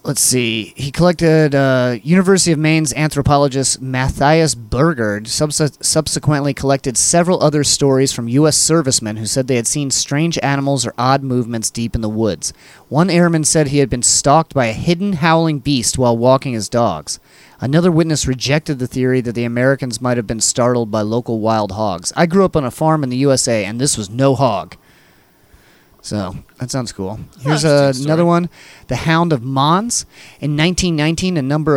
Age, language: 30-49, English